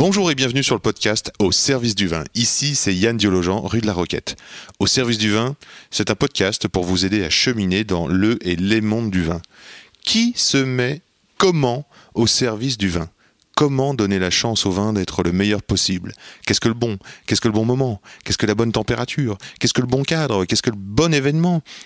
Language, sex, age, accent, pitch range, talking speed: French, male, 30-49, French, 90-125 Hz, 215 wpm